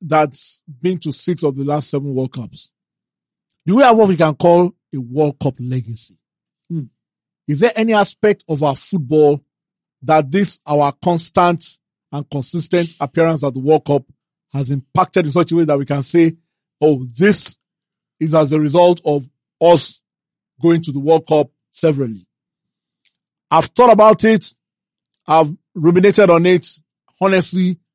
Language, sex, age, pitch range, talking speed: English, male, 40-59, 145-175 Hz, 155 wpm